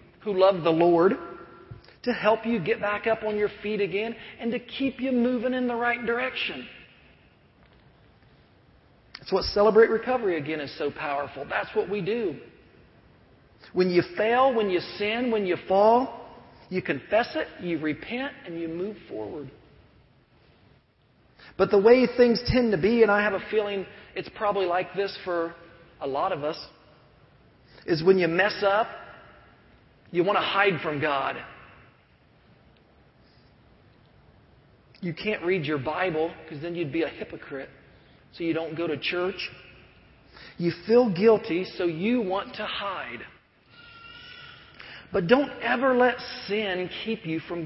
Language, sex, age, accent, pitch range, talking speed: English, male, 40-59, American, 175-230 Hz, 150 wpm